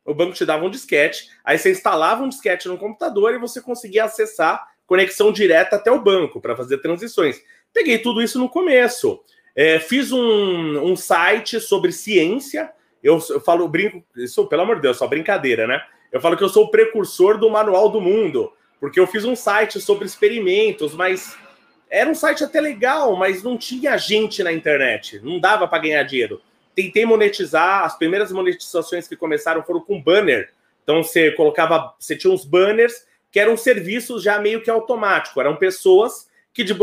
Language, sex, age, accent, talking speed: Portuguese, male, 30-49, Brazilian, 180 wpm